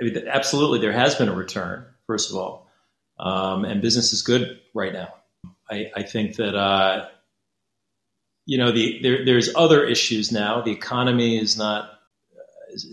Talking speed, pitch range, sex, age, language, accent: 155 wpm, 100-115 Hz, male, 30-49, English, American